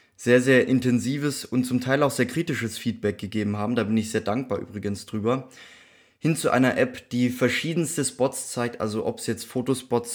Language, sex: German, male